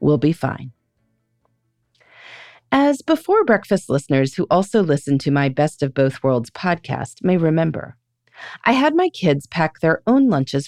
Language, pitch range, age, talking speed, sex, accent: English, 125-200 Hz, 30-49, 150 wpm, female, American